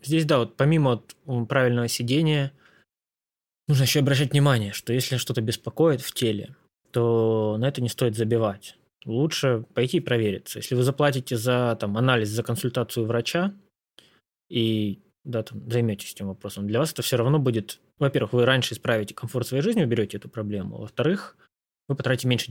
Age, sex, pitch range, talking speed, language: 20-39, male, 110-140 Hz, 155 wpm, Russian